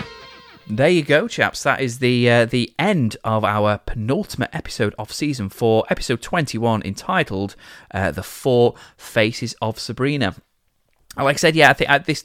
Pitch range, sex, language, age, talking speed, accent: 100-130 Hz, male, English, 20-39, 165 wpm, British